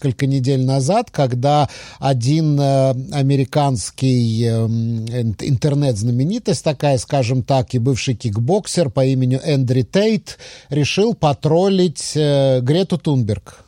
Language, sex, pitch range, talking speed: English, male, 120-155 Hz, 105 wpm